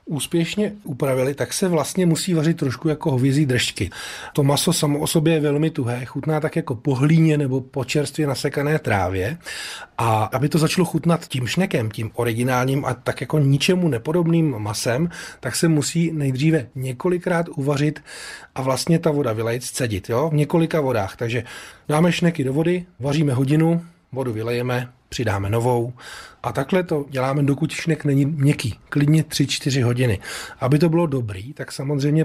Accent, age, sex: native, 30-49, male